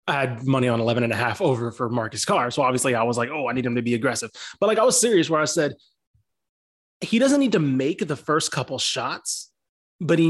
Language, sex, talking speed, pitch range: English, male, 250 wpm, 130-175 Hz